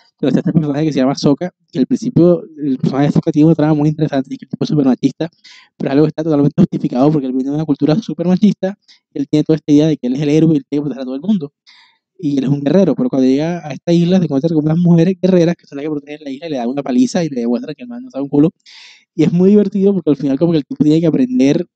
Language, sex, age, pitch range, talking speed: Spanish, male, 20-39, 140-175 Hz, 310 wpm